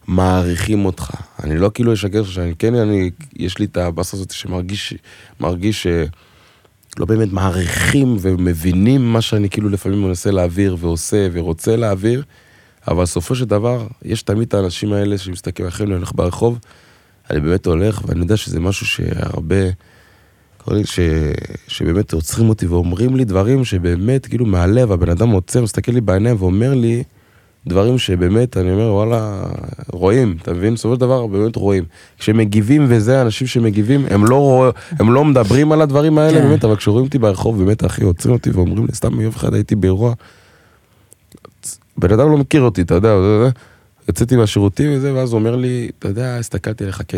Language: Hebrew